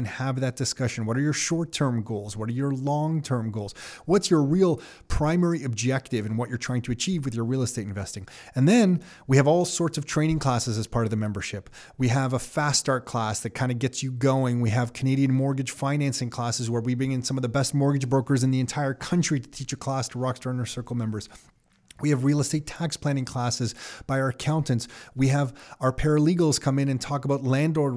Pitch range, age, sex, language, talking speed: 125-150 Hz, 30-49, male, English, 225 wpm